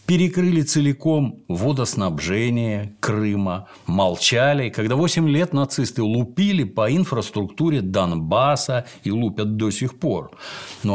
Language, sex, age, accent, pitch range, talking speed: Russian, male, 60-79, native, 105-150 Hz, 105 wpm